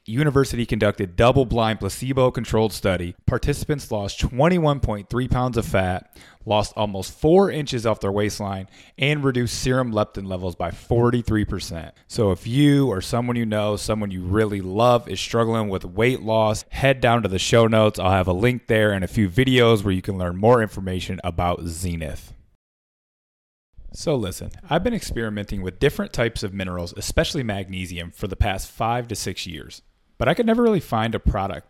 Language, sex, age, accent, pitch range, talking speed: English, male, 30-49, American, 95-120 Hz, 175 wpm